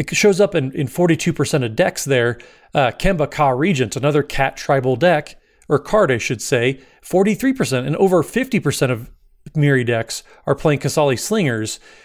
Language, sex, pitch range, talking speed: English, male, 130-165 Hz, 165 wpm